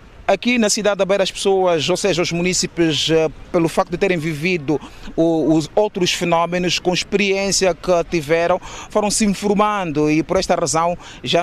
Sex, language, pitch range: male, Portuguese, 160-185 Hz